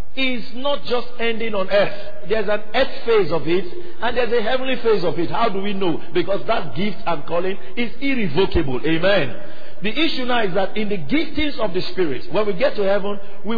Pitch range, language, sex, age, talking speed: 190-245 Hz, English, male, 50-69, 210 wpm